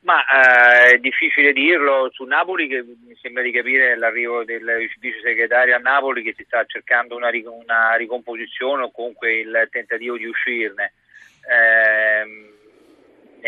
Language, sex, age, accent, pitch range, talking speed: Italian, male, 40-59, native, 115-130 Hz, 145 wpm